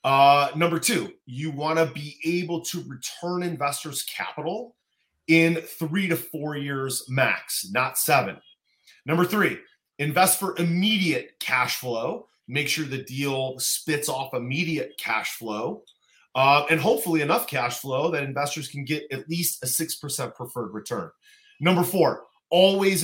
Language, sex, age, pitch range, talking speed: English, male, 30-49, 130-170 Hz, 140 wpm